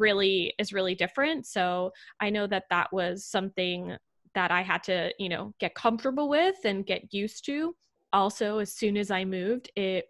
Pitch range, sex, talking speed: 185-220 Hz, female, 185 wpm